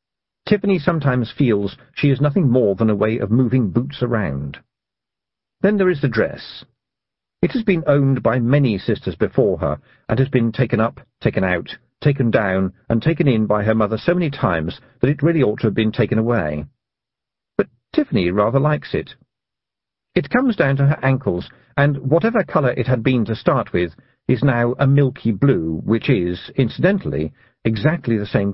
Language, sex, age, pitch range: English, male, 50-69, 110-140 Hz